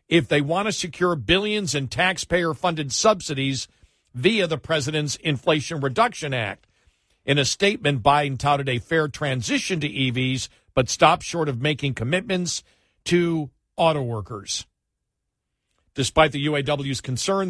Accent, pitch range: American, 115-170 Hz